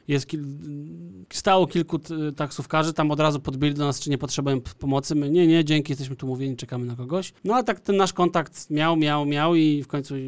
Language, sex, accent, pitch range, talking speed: Polish, male, native, 145-180 Hz, 230 wpm